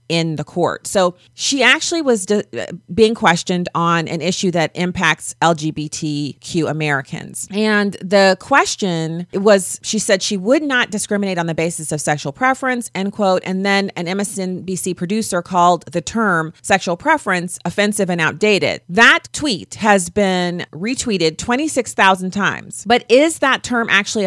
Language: English